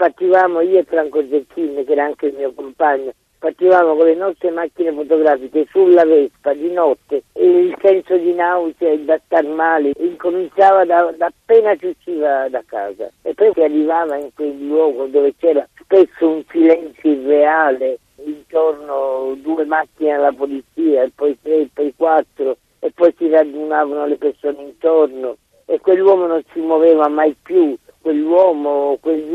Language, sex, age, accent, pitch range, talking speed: Italian, male, 50-69, native, 140-180 Hz, 165 wpm